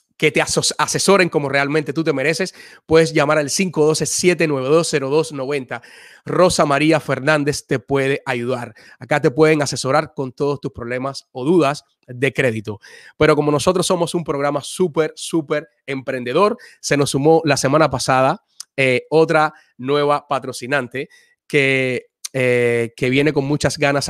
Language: Spanish